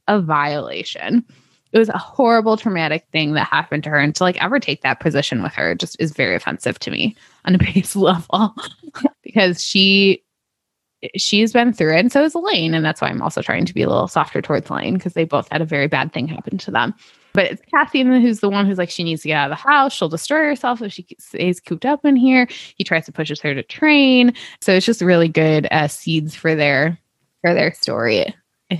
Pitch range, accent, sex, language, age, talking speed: 155-210 Hz, American, female, English, 20-39, 230 wpm